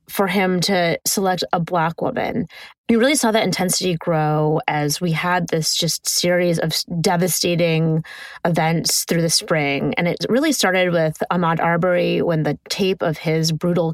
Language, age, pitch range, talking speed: English, 20-39, 165-195 Hz, 165 wpm